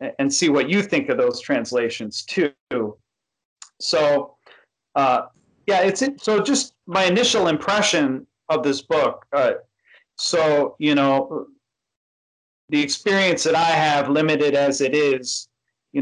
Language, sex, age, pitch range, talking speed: English, male, 40-59, 130-185 Hz, 130 wpm